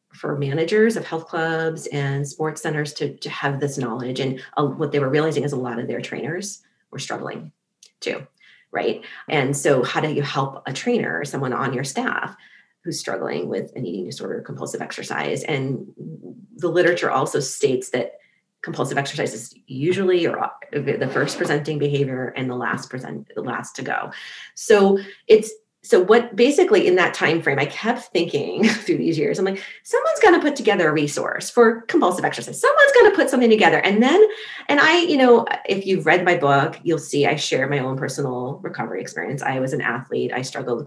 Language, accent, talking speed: English, American, 195 wpm